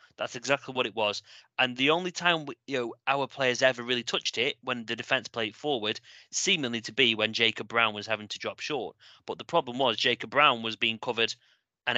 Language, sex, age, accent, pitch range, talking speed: English, male, 30-49, British, 115-160 Hz, 220 wpm